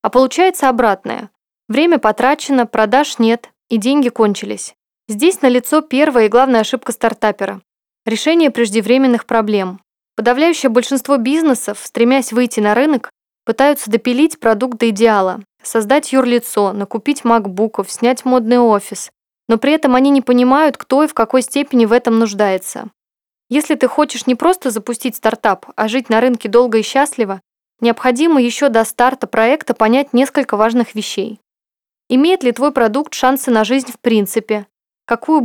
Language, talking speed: Russian, 145 wpm